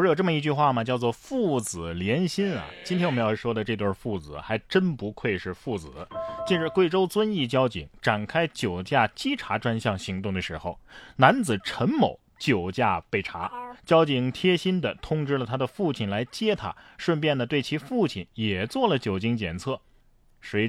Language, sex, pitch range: Chinese, male, 110-155 Hz